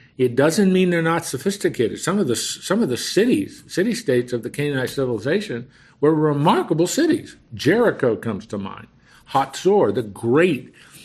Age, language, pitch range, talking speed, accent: 50-69, English, 115-160 Hz, 155 wpm, American